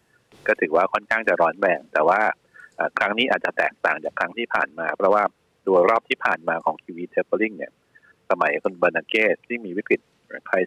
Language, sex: Thai, male